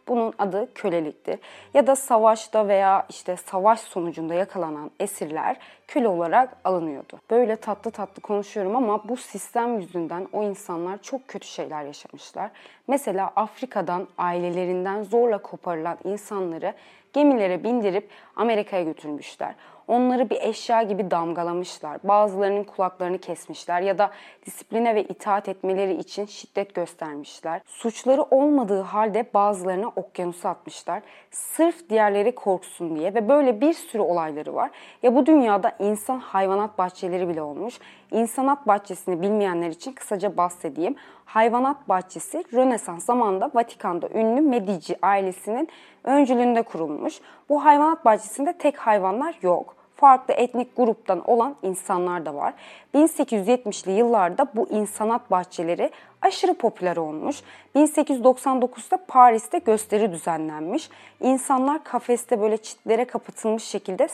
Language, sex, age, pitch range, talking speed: Turkish, female, 20-39, 185-250 Hz, 120 wpm